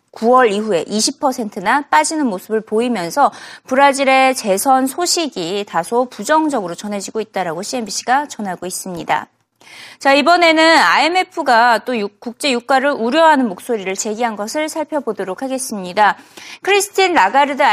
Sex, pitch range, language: female, 215-305 Hz, Korean